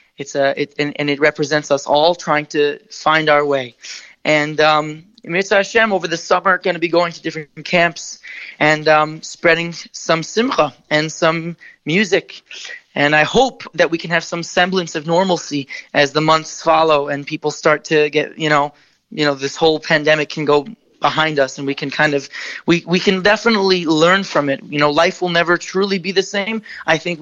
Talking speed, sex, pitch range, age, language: 200 wpm, male, 155-185 Hz, 20-39, English